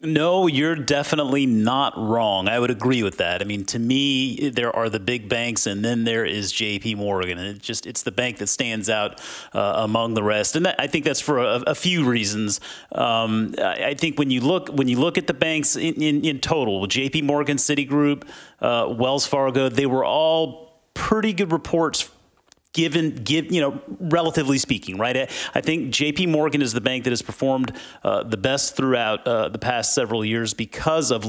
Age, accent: 30-49, American